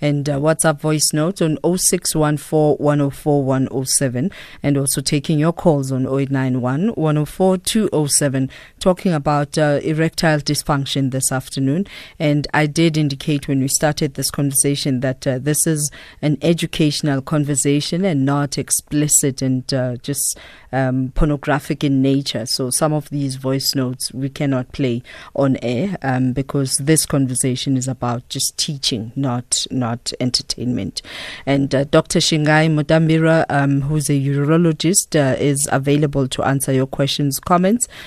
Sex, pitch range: female, 135-155 Hz